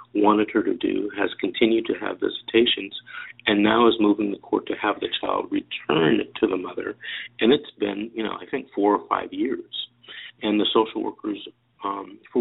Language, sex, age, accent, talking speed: English, male, 50-69, American, 195 wpm